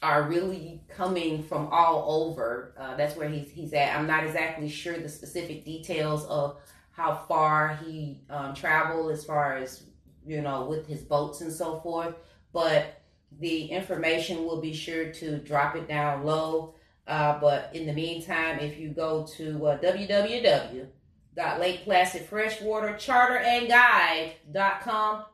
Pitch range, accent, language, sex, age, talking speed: 150-175 Hz, American, English, female, 30-49, 135 wpm